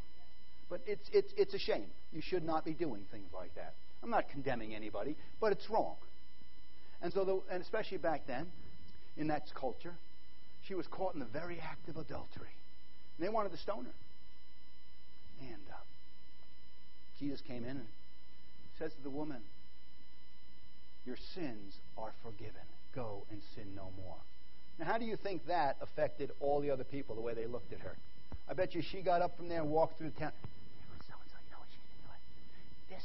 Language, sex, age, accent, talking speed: English, male, 50-69, American, 175 wpm